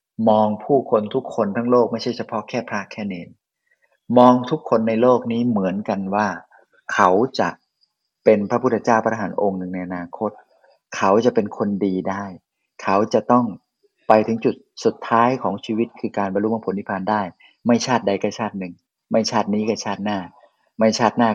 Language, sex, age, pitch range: Thai, male, 30-49, 95-115 Hz